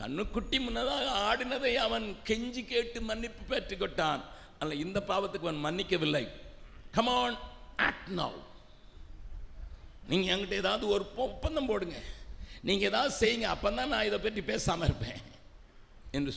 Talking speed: 115 wpm